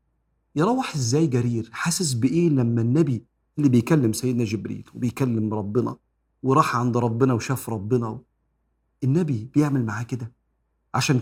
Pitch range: 115-160 Hz